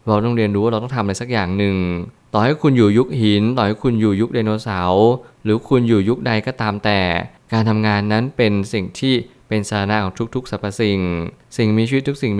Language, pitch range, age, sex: Thai, 100-120 Hz, 20-39, male